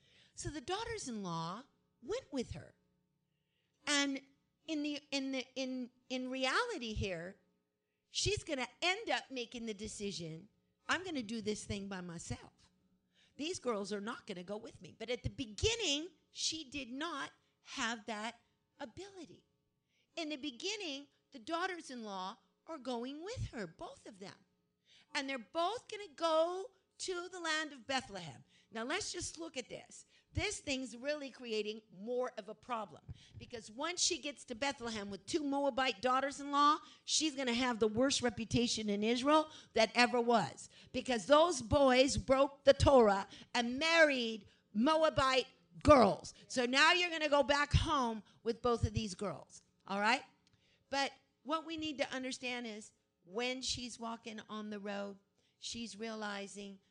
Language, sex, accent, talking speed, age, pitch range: English, female, American, 155 wpm, 50-69, 215-295 Hz